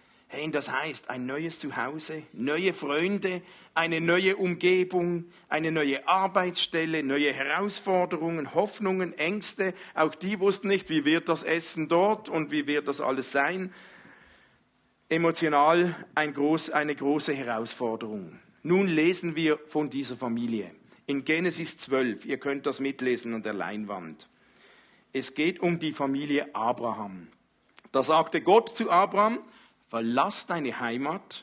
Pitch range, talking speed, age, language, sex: 140-185 Hz, 130 wpm, 50-69, German, male